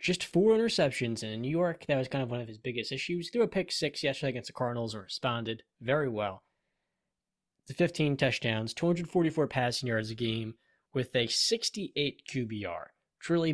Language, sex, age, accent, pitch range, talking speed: English, male, 10-29, American, 120-170 Hz, 185 wpm